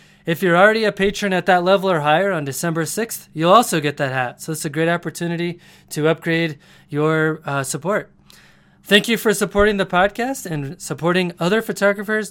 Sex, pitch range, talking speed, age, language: male, 150-195 Hz, 185 wpm, 20-39, English